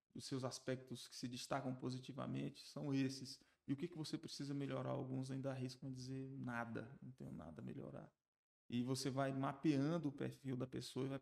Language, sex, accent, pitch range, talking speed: Portuguese, male, Brazilian, 130-150 Hz, 195 wpm